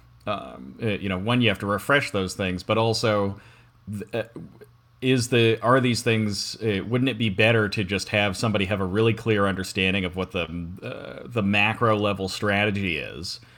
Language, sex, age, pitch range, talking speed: English, male, 30-49, 95-115 Hz, 170 wpm